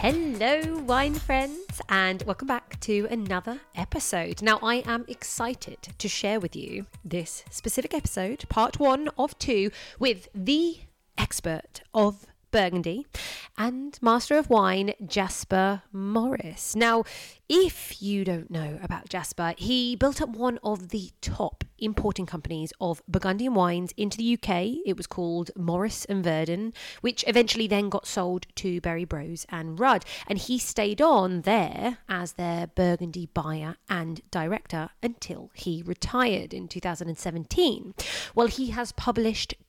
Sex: female